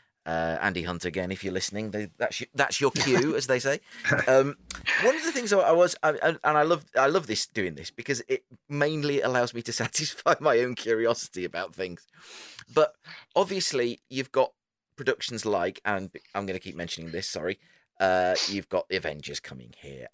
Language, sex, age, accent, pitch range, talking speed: English, male, 30-49, British, 85-125 Hz, 190 wpm